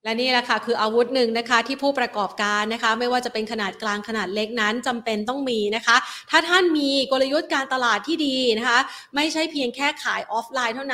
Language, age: Thai, 30-49